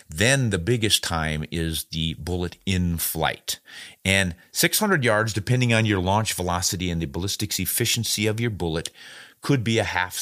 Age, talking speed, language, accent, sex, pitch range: 50-69, 165 wpm, English, American, male, 85-105 Hz